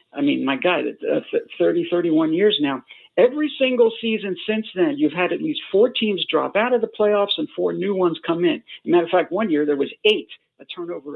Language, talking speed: English, 215 wpm